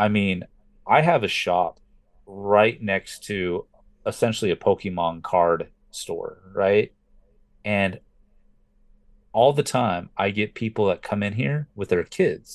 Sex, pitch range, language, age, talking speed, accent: male, 95-125 Hz, English, 30-49, 140 wpm, American